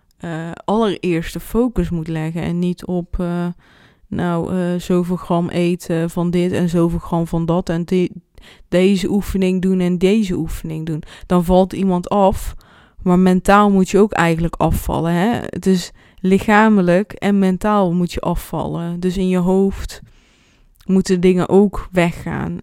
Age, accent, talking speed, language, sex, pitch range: 20-39, Dutch, 155 wpm, Dutch, female, 170-200 Hz